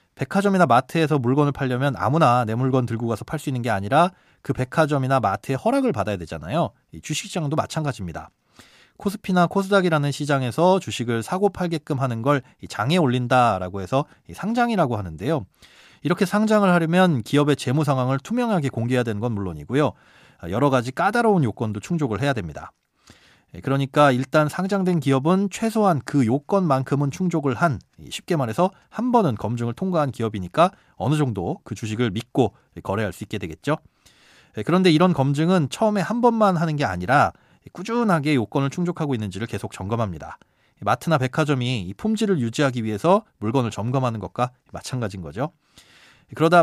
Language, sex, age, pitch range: Korean, male, 30-49, 115-175 Hz